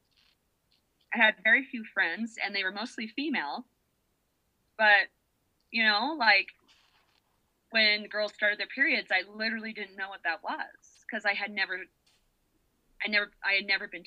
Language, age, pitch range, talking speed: English, 30-49, 185-250 Hz, 155 wpm